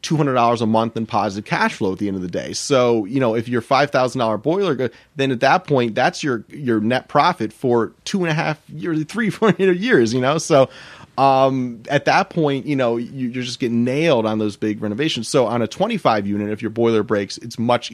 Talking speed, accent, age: 245 wpm, American, 30-49